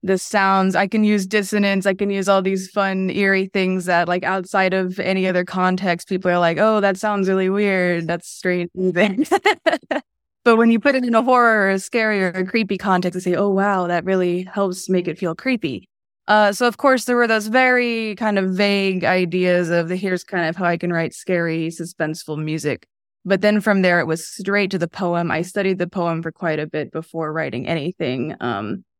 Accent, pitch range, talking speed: American, 170-205 Hz, 215 wpm